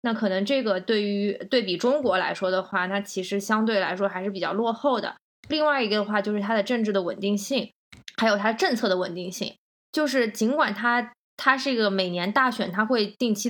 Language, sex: Chinese, female